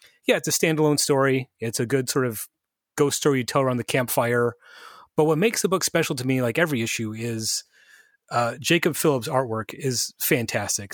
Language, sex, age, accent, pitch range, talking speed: English, male, 30-49, American, 115-150 Hz, 190 wpm